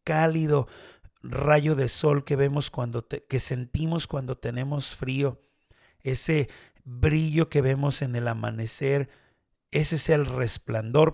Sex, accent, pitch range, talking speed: male, Mexican, 115-145 Hz, 120 wpm